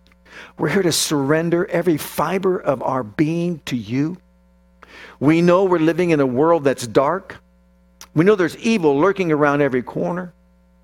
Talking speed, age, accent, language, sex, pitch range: 155 wpm, 50-69, American, English, male, 120-190 Hz